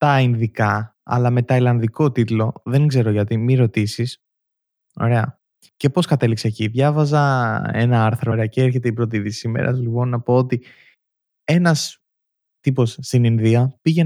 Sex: male